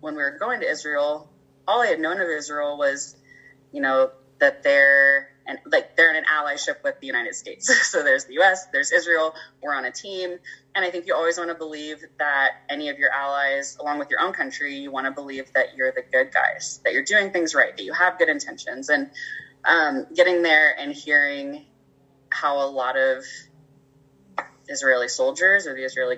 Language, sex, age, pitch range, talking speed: English, female, 20-39, 135-165 Hz, 205 wpm